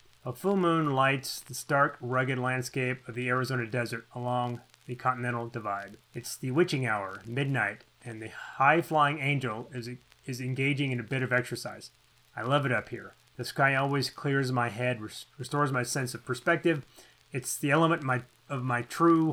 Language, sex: English, male